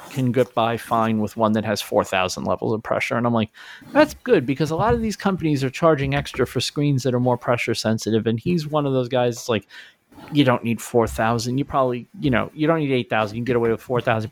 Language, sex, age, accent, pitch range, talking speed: English, male, 40-59, American, 115-150 Hz, 245 wpm